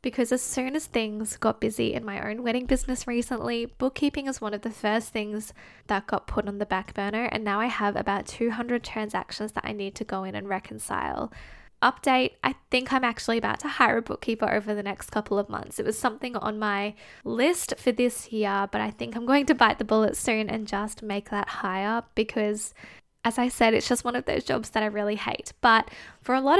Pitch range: 205-245 Hz